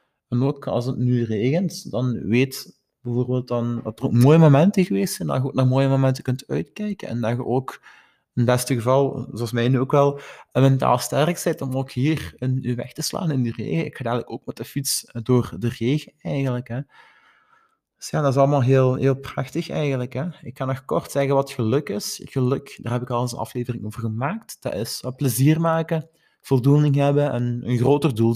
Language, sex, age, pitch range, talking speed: Dutch, male, 20-39, 120-140 Hz, 215 wpm